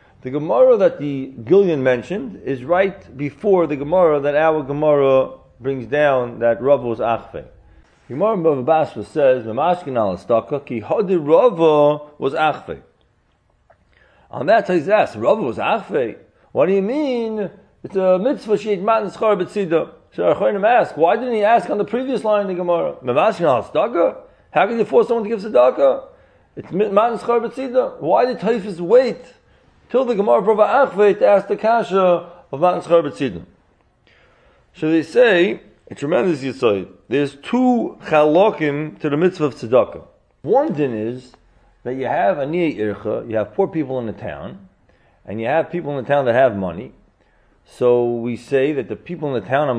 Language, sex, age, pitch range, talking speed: English, male, 40-59, 125-200 Hz, 170 wpm